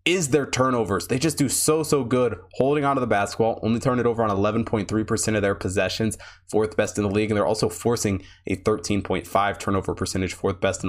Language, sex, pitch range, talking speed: English, male, 105-145 Hz, 210 wpm